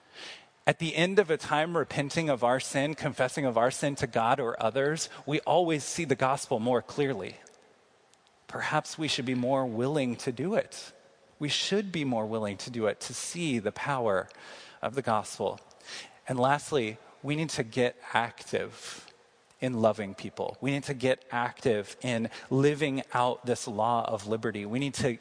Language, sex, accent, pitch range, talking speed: English, male, American, 125-155 Hz, 175 wpm